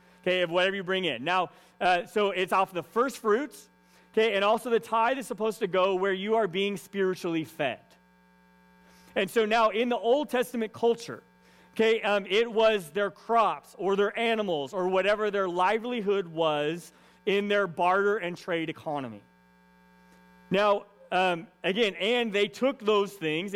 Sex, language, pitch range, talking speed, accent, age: male, English, 160-215 Hz, 165 wpm, American, 30-49